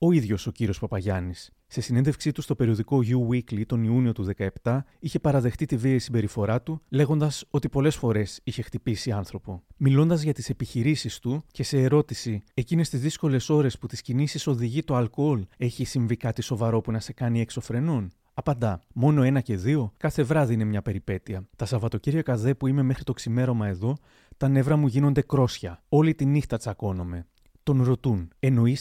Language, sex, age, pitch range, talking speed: Greek, male, 30-49, 110-145 Hz, 180 wpm